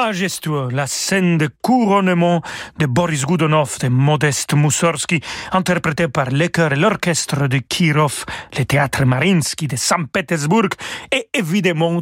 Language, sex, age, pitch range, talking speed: French, male, 40-59, 145-180 Hz, 125 wpm